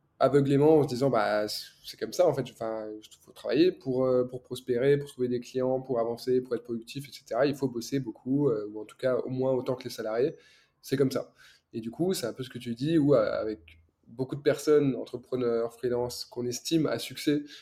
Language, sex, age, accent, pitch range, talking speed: French, male, 20-39, French, 120-140 Hz, 220 wpm